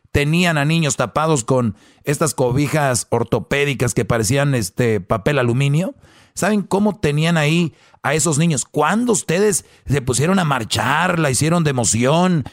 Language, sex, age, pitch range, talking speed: Spanish, male, 40-59, 130-165 Hz, 145 wpm